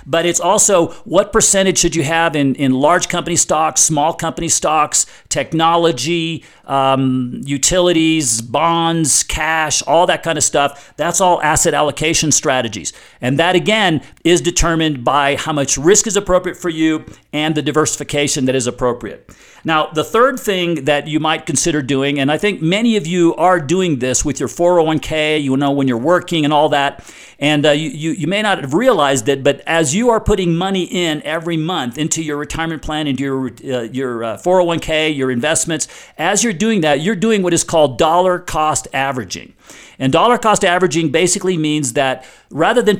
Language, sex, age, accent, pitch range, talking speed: English, male, 50-69, American, 140-175 Hz, 180 wpm